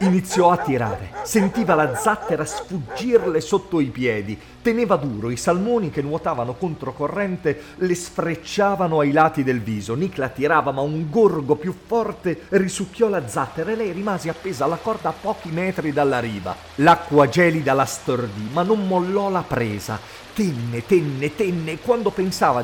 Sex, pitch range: male, 115-180 Hz